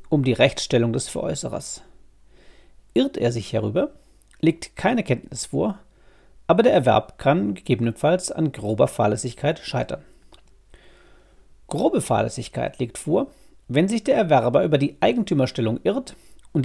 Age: 40-59